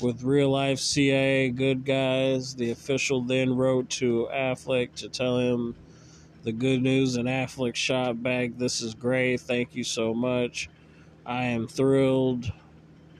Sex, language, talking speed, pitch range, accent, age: male, English, 150 wpm, 115-130 Hz, American, 20-39